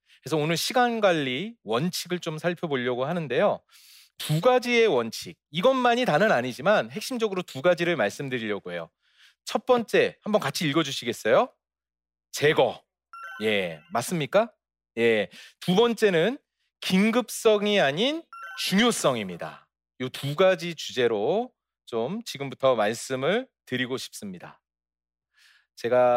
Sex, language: male, Korean